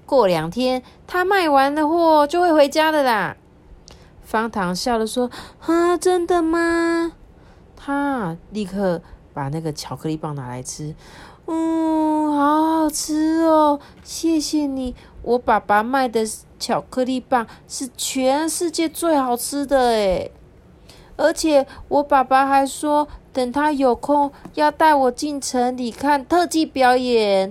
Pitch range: 175-290 Hz